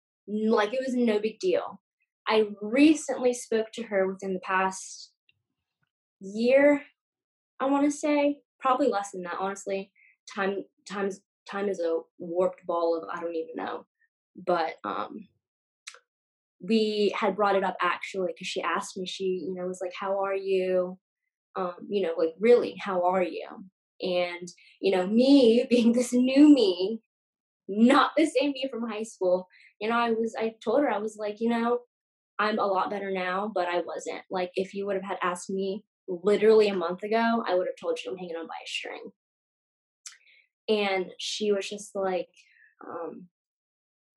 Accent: American